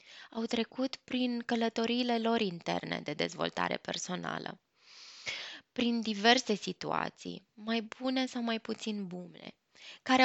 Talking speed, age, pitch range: 110 wpm, 20-39, 190-240 Hz